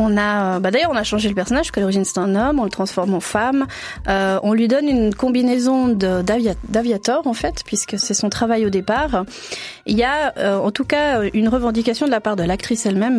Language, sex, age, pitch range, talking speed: French, female, 30-49, 205-245 Hz, 235 wpm